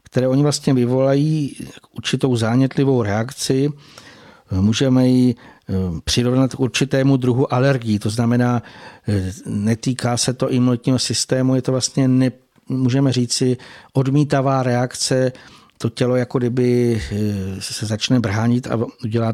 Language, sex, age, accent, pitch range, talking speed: Czech, male, 60-79, native, 120-135 Hz, 125 wpm